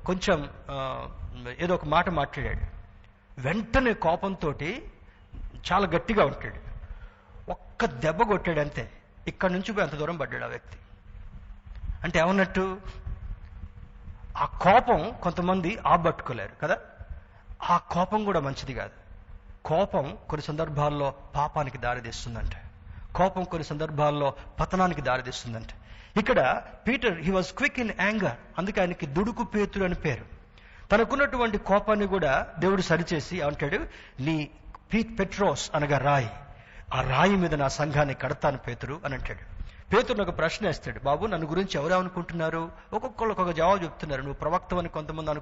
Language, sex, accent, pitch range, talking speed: Telugu, male, native, 125-185 Hz, 125 wpm